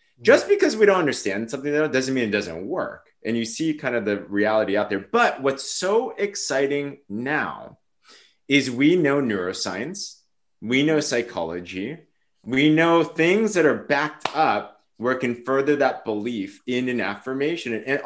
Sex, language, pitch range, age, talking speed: male, English, 105-155 Hz, 30-49, 165 wpm